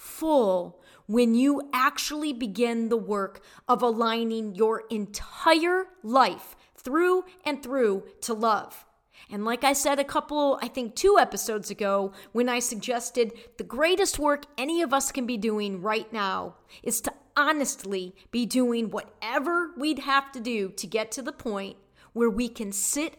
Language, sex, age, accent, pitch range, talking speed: English, female, 40-59, American, 225-285 Hz, 160 wpm